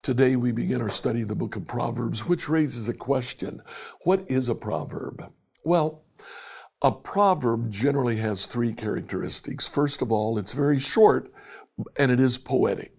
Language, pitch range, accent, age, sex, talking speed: English, 110-140 Hz, American, 60-79, male, 160 wpm